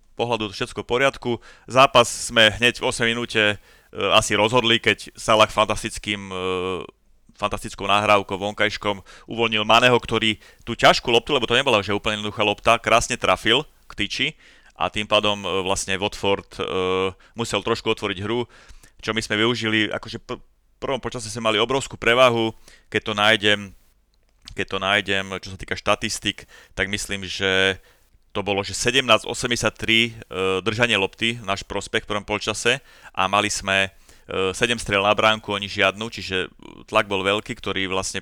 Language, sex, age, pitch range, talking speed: Slovak, male, 30-49, 95-110 Hz, 160 wpm